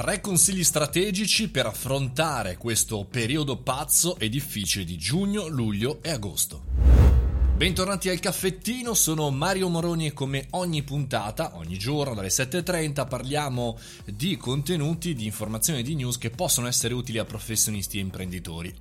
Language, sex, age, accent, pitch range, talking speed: Italian, male, 30-49, native, 105-145 Hz, 145 wpm